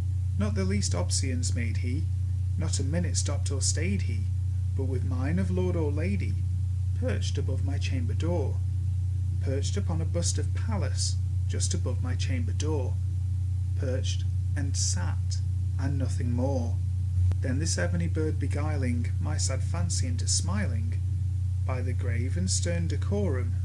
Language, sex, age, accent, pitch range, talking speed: English, male, 30-49, British, 90-95 Hz, 145 wpm